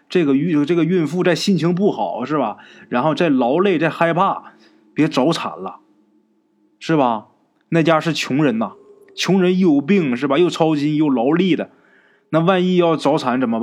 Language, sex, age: Chinese, male, 20-39